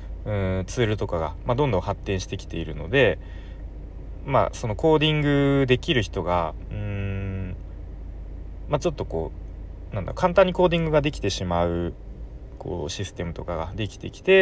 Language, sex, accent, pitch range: Japanese, male, native, 85-120 Hz